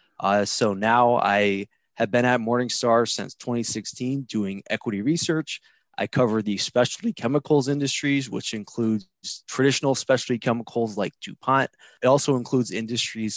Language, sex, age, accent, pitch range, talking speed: English, male, 20-39, American, 110-135 Hz, 135 wpm